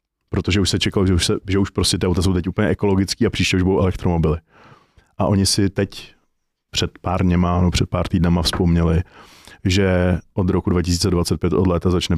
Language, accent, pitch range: Czech, native, 90-100 Hz